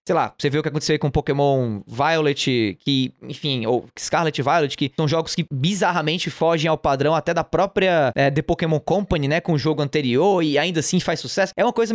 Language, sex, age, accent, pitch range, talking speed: Portuguese, male, 20-39, Brazilian, 140-185 Hz, 220 wpm